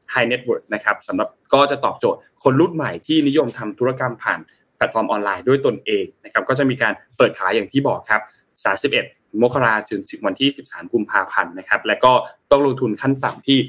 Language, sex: Thai, male